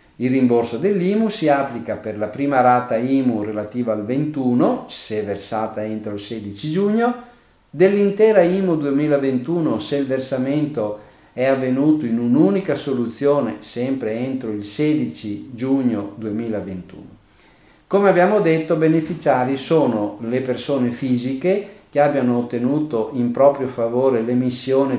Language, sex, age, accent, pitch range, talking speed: Italian, male, 50-69, native, 120-160 Hz, 120 wpm